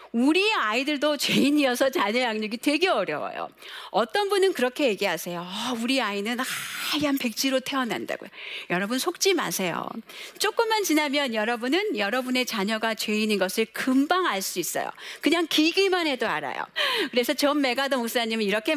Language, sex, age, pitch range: Korean, female, 40-59, 205-310 Hz